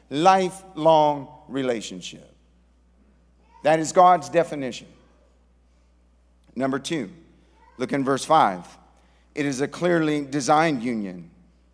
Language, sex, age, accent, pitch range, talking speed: English, male, 50-69, American, 145-190 Hz, 90 wpm